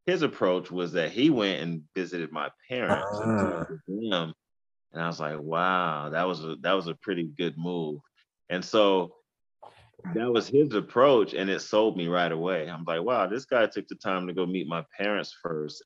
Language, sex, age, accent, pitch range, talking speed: English, male, 30-49, American, 80-95 Hz, 200 wpm